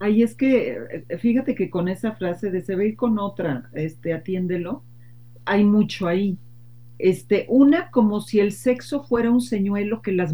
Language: Spanish